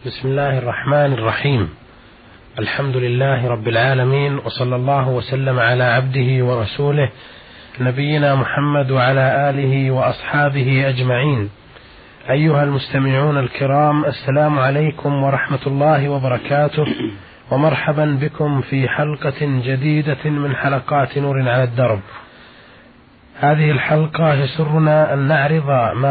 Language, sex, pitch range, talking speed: Arabic, male, 130-155 Hz, 100 wpm